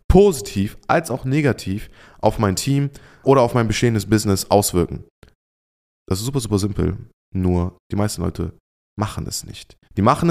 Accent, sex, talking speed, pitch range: German, male, 155 wpm, 100-125 Hz